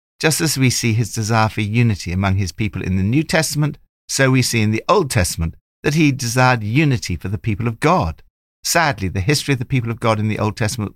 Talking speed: 235 wpm